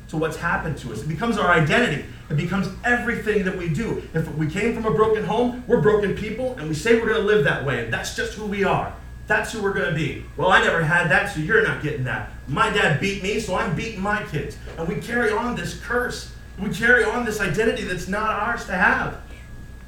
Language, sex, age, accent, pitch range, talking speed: English, male, 40-59, American, 140-210 Hz, 245 wpm